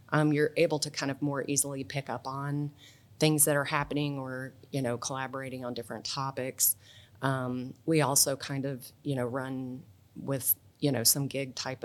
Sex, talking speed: female, 180 wpm